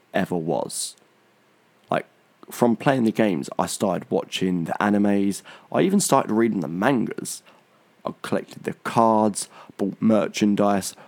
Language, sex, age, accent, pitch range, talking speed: English, male, 20-39, British, 95-110 Hz, 130 wpm